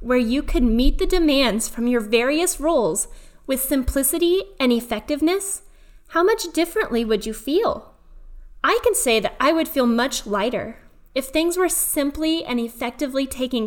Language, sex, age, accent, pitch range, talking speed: English, female, 10-29, American, 230-310 Hz, 160 wpm